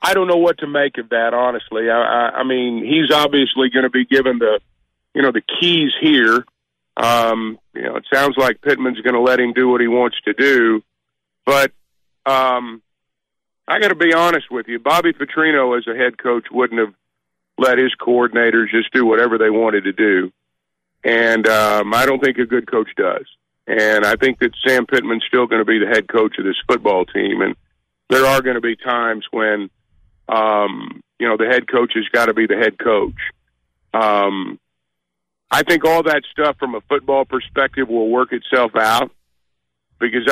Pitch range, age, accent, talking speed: 110-135 Hz, 50-69, American, 195 wpm